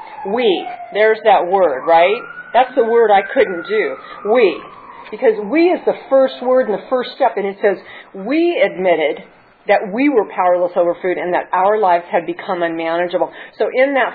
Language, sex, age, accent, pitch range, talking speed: English, female, 40-59, American, 190-265 Hz, 180 wpm